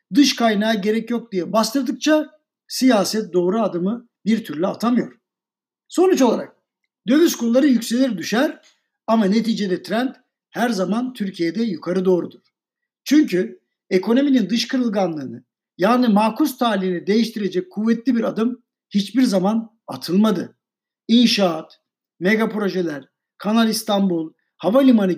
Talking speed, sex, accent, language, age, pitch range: 110 wpm, male, native, Turkish, 60-79, 185-245 Hz